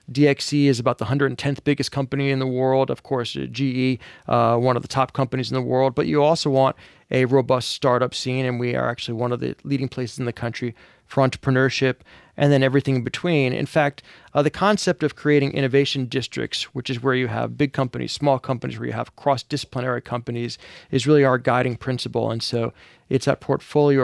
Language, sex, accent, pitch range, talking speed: English, male, American, 125-140 Hz, 205 wpm